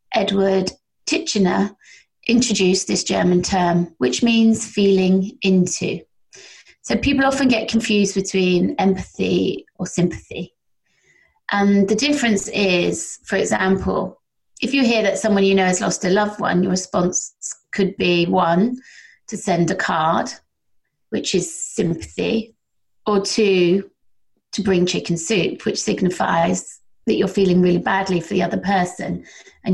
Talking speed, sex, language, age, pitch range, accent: 135 wpm, female, English, 30-49, 180-220 Hz, British